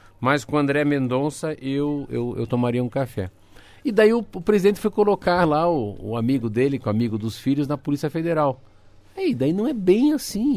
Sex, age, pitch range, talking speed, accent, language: male, 50-69, 105-145 Hz, 210 wpm, Brazilian, Portuguese